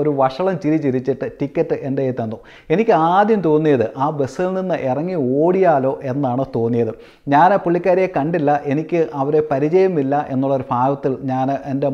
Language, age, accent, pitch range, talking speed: Malayalam, 30-49, native, 130-160 Hz, 140 wpm